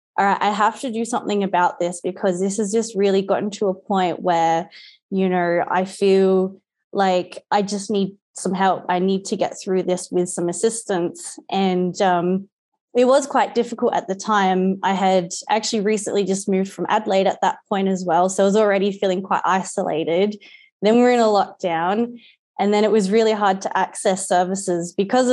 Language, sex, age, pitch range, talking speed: English, female, 20-39, 180-210 Hz, 195 wpm